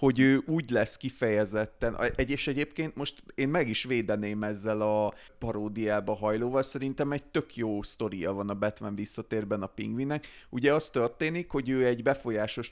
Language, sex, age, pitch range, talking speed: Hungarian, male, 30-49, 110-140 Hz, 165 wpm